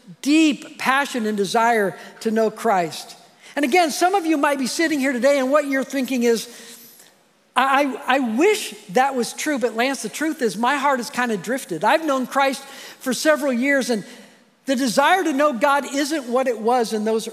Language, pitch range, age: English, 230-285 Hz, 50-69